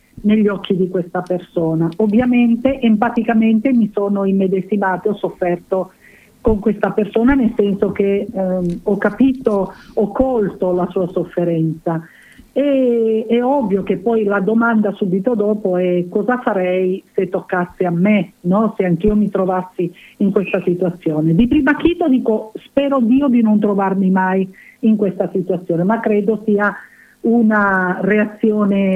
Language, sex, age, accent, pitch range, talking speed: Italian, female, 50-69, native, 185-230 Hz, 140 wpm